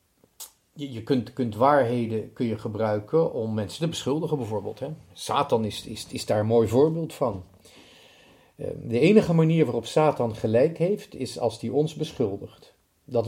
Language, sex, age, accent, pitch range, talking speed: Dutch, male, 40-59, Dutch, 110-145 Hz, 145 wpm